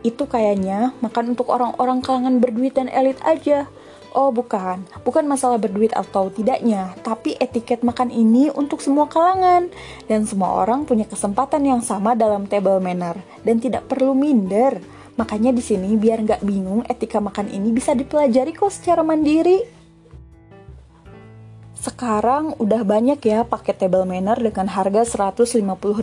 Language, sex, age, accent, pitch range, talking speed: Indonesian, female, 20-39, native, 195-275 Hz, 145 wpm